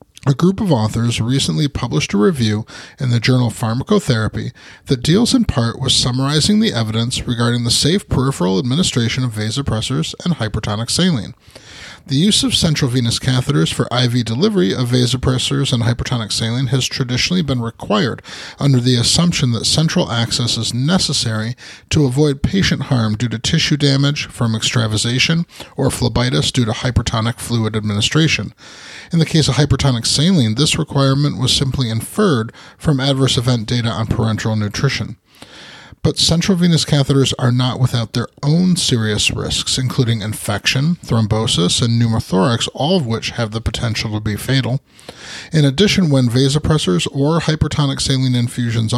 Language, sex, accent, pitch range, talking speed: English, male, American, 115-150 Hz, 150 wpm